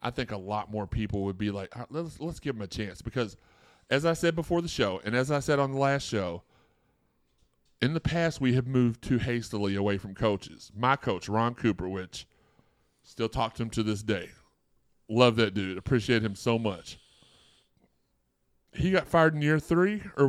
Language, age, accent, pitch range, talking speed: English, 30-49, American, 110-150 Hz, 200 wpm